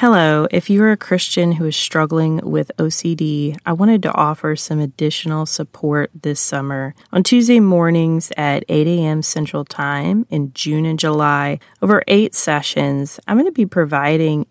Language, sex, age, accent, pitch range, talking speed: English, female, 30-49, American, 145-180 Hz, 160 wpm